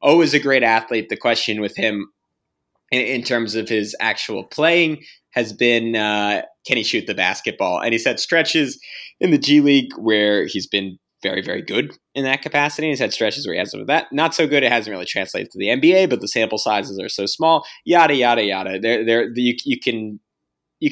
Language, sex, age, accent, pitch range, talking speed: English, male, 20-39, American, 105-130 Hz, 220 wpm